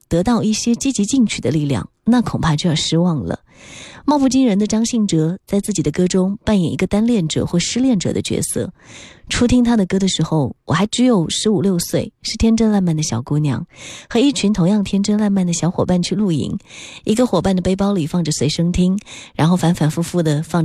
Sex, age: female, 20-39